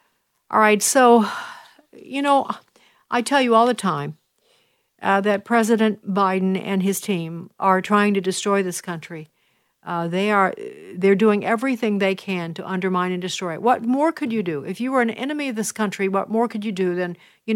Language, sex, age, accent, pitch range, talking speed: English, female, 60-79, American, 195-260 Hz, 195 wpm